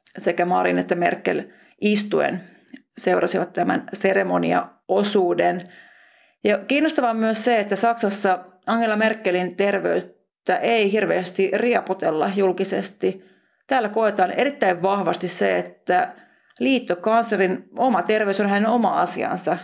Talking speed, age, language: 105 wpm, 30-49, Finnish